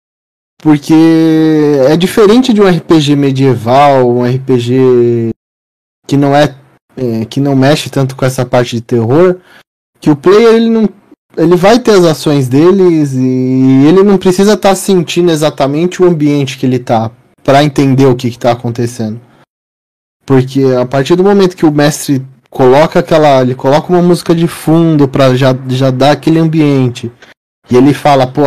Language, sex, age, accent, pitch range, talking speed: Portuguese, male, 20-39, Brazilian, 130-175 Hz, 165 wpm